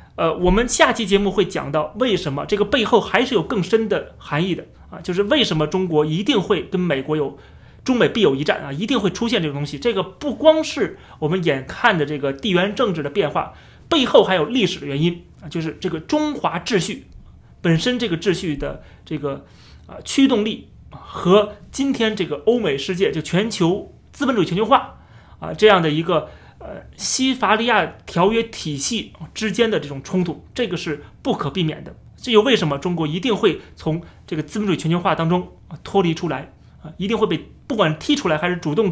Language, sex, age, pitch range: Chinese, male, 30-49, 155-200 Hz